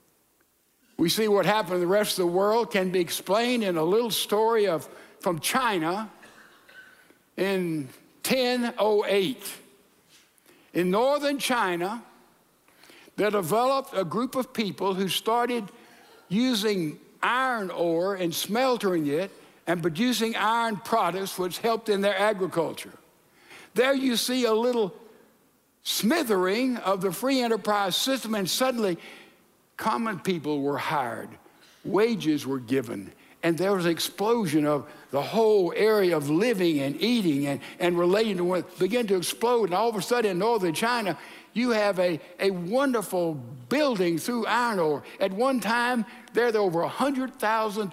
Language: English